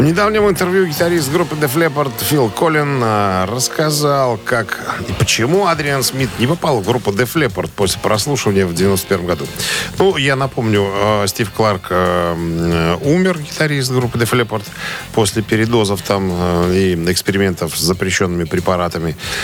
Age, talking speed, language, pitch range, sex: 40-59, 135 wpm, Russian, 95-130 Hz, male